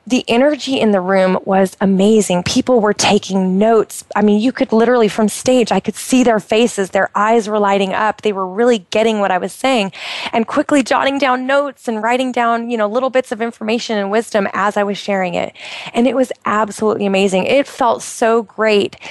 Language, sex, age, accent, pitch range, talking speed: English, female, 20-39, American, 200-235 Hz, 205 wpm